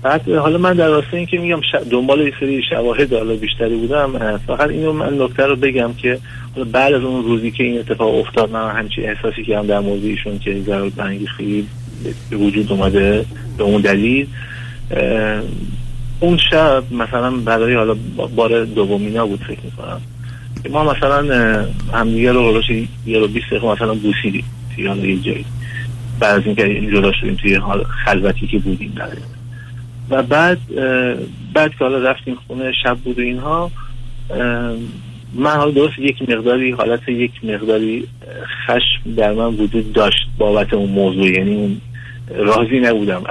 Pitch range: 110-130 Hz